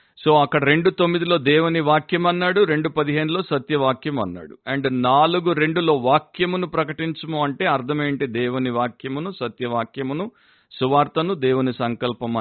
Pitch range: 115-150 Hz